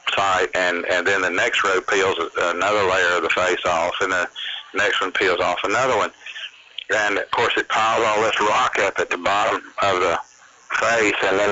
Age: 50-69